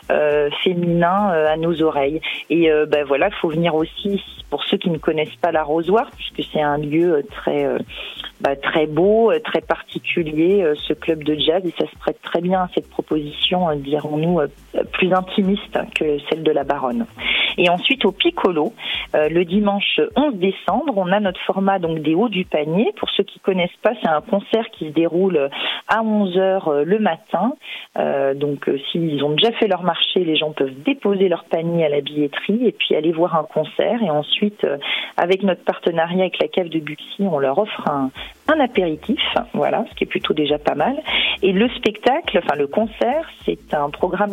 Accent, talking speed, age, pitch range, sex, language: French, 200 wpm, 40-59, 155-205 Hz, female, French